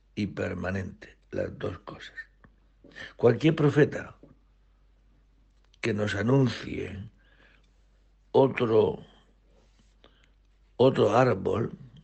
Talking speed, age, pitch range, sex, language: 65 wpm, 60-79, 100-125 Hz, male, Spanish